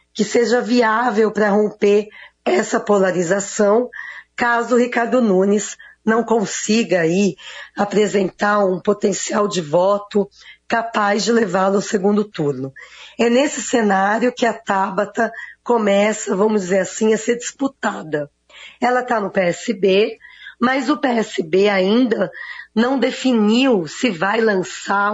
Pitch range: 195-240 Hz